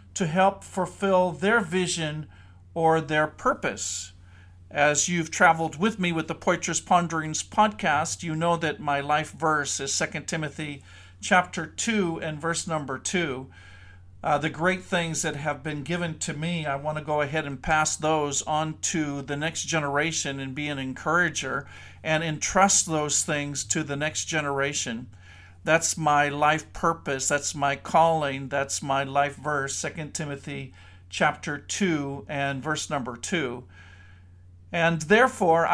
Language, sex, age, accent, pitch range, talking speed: English, male, 50-69, American, 140-175 Hz, 150 wpm